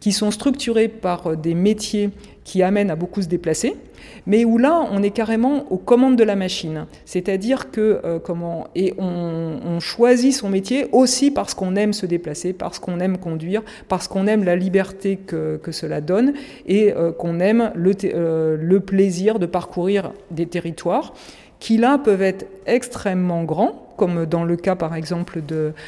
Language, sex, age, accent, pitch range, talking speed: French, female, 50-69, French, 165-210 Hz, 180 wpm